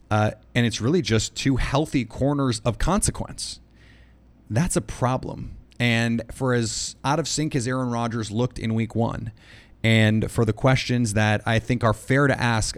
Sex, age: male, 30-49